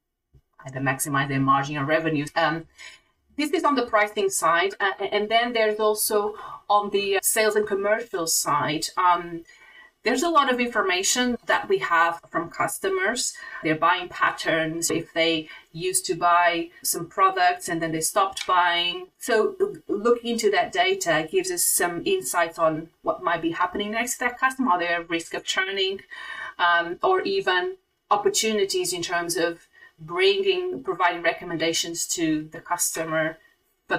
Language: English